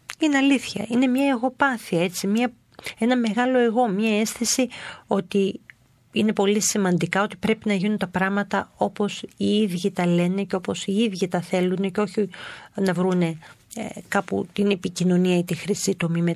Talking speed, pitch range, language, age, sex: 160 wpm, 180-215 Hz, Greek, 40-59, female